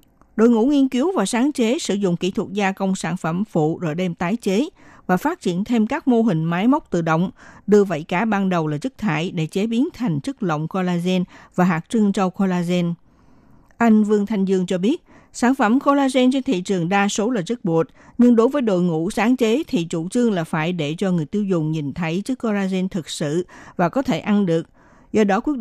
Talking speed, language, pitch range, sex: 230 wpm, Vietnamese, 175-240 Hz, female